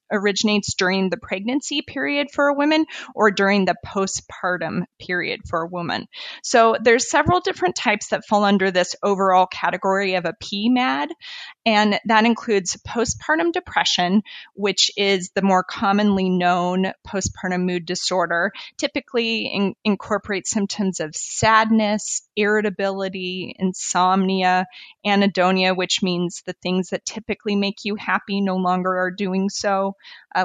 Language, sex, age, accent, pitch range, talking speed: English, female, 20-39, American, 185-220 Hz, 130 wpm